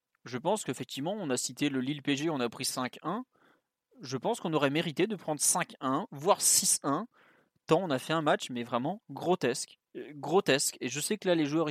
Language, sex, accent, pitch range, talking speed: French, male, French, 130-165 Hz, 205 wpm